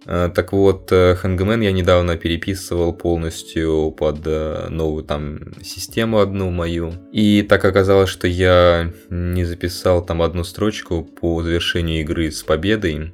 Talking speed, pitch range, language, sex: 130 wpm, 80-95 Hz, Russian, male